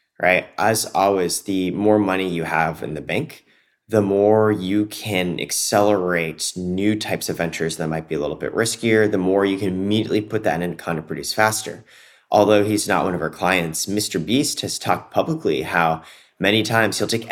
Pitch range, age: 85-105 Hz, 30-49